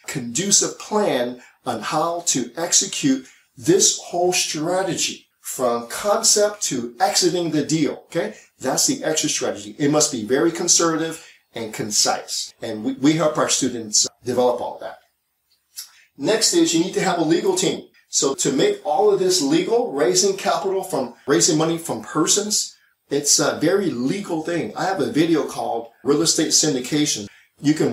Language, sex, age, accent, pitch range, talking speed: English, male, 40-59, American, 140-200 Hz, 160 wpm